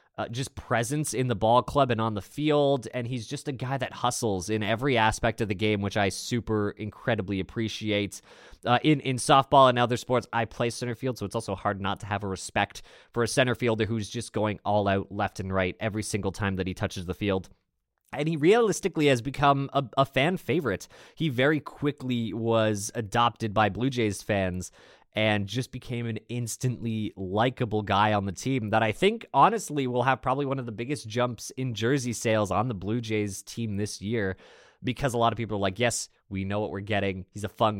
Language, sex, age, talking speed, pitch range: English, male, 20-39, 215 wpm, 105-130 Hz